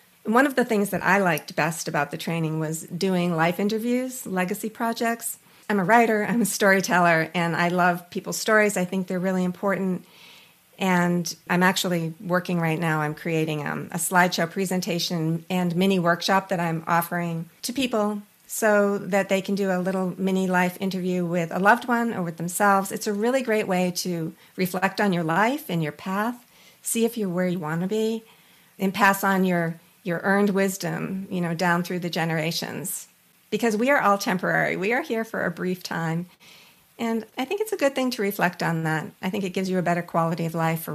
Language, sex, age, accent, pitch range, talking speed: English, female, 50-69, American, 170-205 Hz, 200 wpm